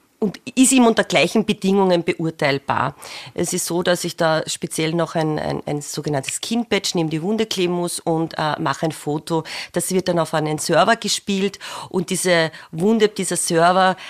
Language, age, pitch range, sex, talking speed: German, 30-49, 160-185 Hz, female, 185 wpm